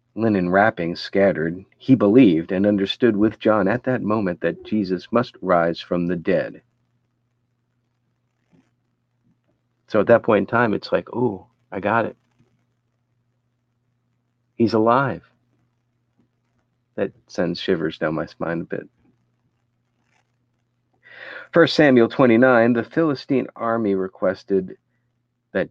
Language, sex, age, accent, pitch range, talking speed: English, male, 50-69, American, 95-120 Hz, 115 wpm